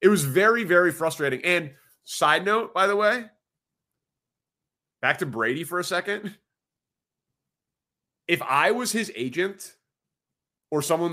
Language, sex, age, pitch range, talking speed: English, male, 30-49, 135-175 Hz, 130 wpm